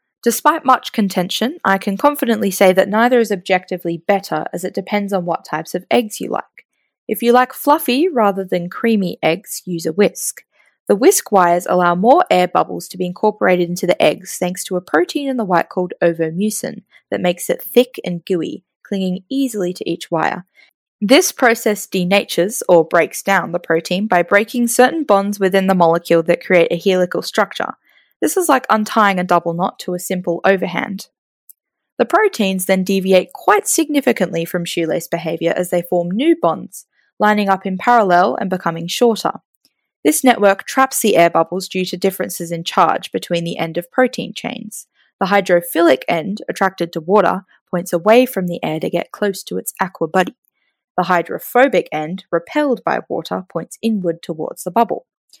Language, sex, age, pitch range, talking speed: English, female, 20-39, 175-225 Hz, 180 wpm